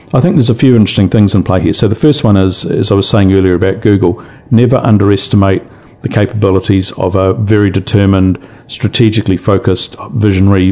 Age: 50-69